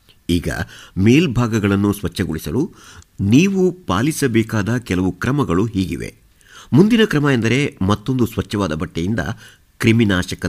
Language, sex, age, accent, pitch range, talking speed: Kannada, male, 50-69, native, 95-120 Hz, 85 wpm